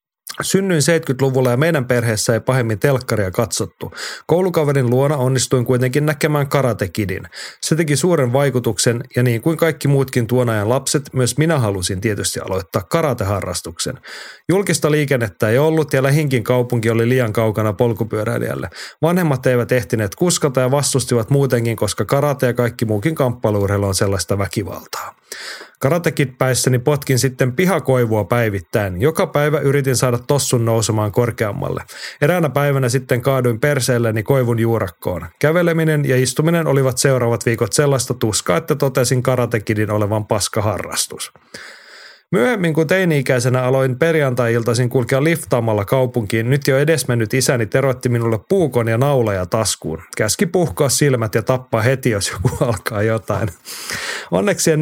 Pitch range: 115-145 Hz